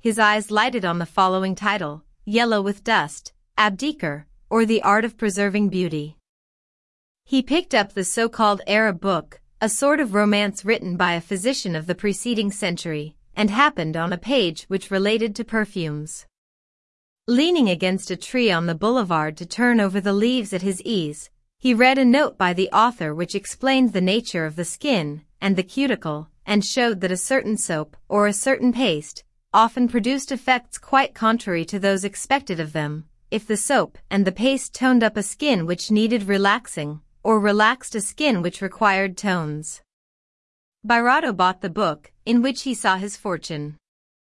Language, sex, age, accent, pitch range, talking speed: English, female, 30-49, American, 180-235 Hz, 170 wpm